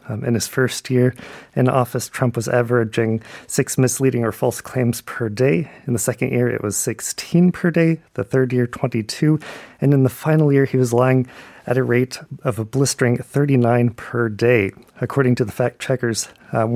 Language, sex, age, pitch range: Korean, male, 30-49, 120-140 Hz